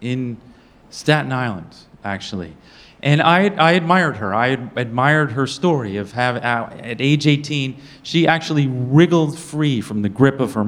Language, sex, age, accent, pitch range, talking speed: English, male, 40-59, American, 110-150 Hz, 150 wpm